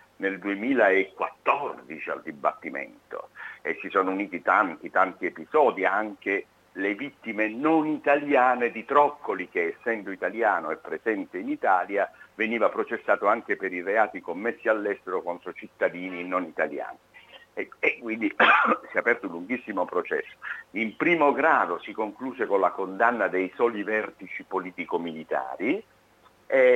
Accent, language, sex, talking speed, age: native, Italian, male, 130 wpm, 50-69